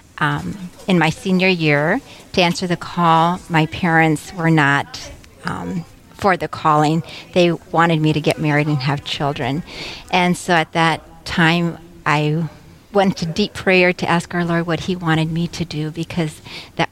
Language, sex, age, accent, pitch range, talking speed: English, female, 50-69, American, 160-185 Hz, 170 wpm